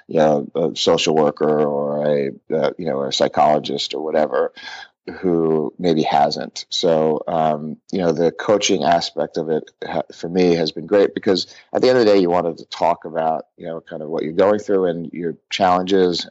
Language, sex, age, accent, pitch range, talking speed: English, male, 30-49, American, 80-85 Hz, 200 wpm